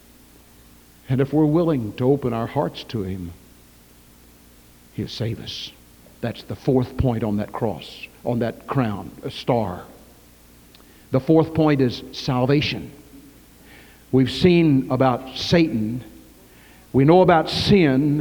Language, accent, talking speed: English, American, 125 wpm